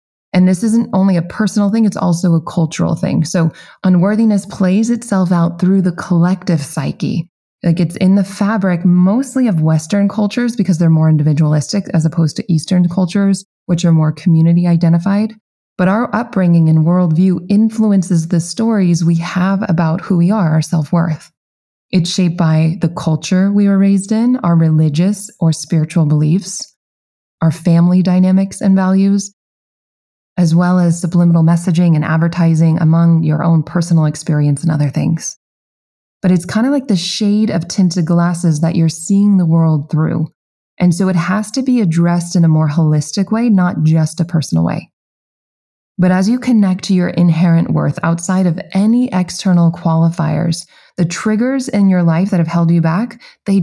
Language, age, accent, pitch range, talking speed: English, 20-39, American, 165-195 Hz, 170 wpm